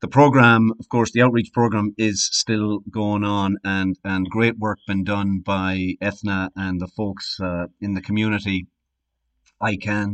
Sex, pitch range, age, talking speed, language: male, 95-110 Hz, 40-59, 160 wpm, English